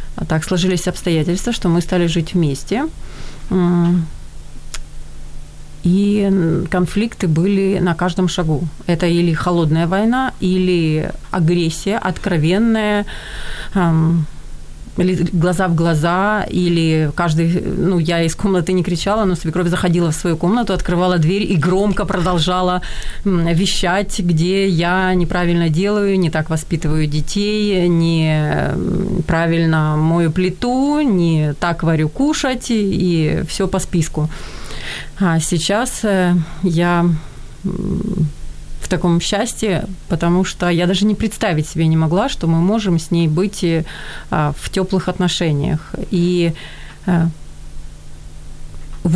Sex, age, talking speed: female, 30-49, 110 wpm